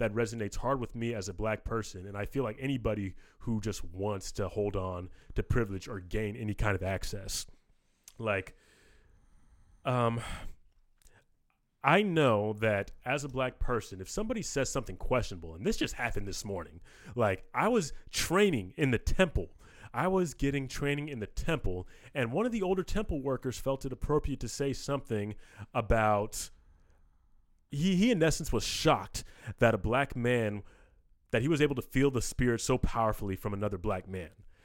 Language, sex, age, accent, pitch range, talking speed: English, male, 30-49, American, 100-130 Hz, 175 wpm